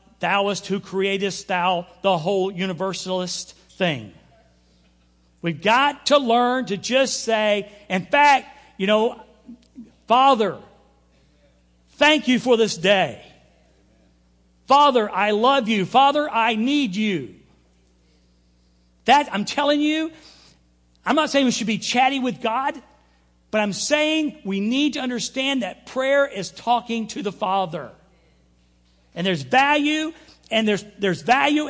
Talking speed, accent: 130 wpm, American